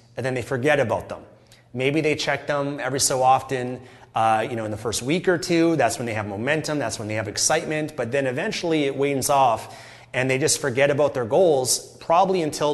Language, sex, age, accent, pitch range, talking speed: English, male, 30-49, American, 120-150 Hz, 220 wpm